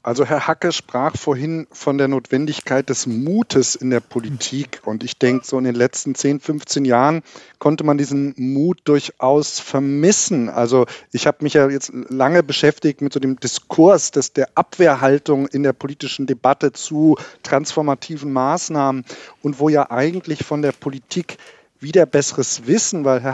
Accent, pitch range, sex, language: German, 130-155 Hz, male, German